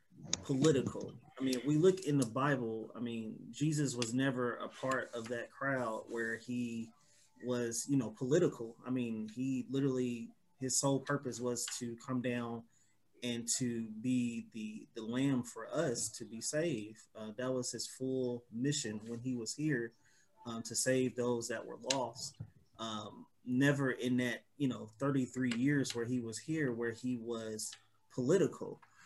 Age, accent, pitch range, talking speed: 20-39, American, 115-140 Hz, 165 wpm